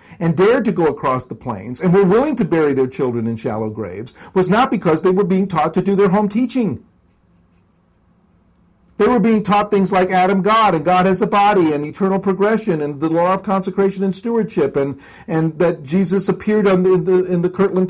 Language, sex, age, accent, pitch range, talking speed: English, male, 50-69, American, 150-205 Hz, 210 wpm